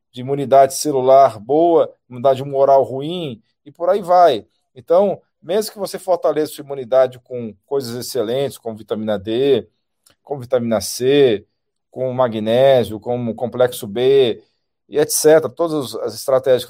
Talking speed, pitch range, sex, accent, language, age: 135 wpm, 125-165 Hz, male, Brazilian, Portuguese, 40-59